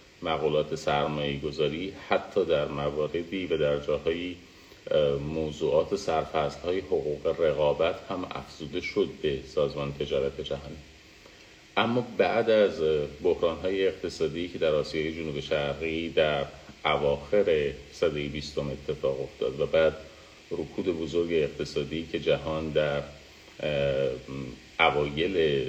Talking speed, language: 105 wpm, Persian